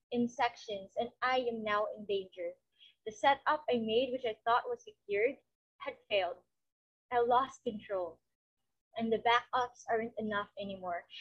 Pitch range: 235-295 Hz